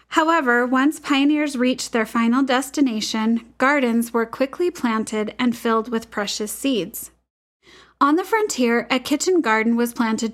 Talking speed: 140 wpm